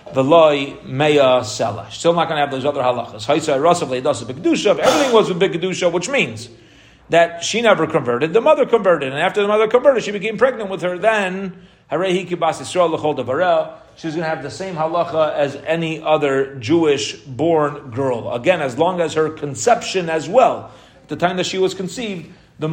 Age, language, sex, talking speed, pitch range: 30-49, English, male, 160 wpm, 140-180 Hz